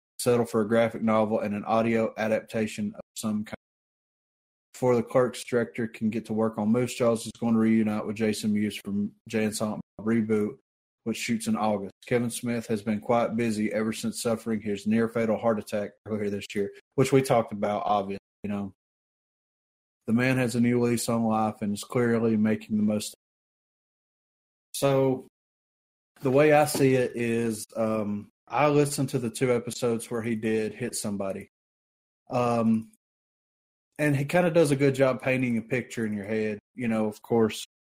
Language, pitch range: English, 110-125 Hz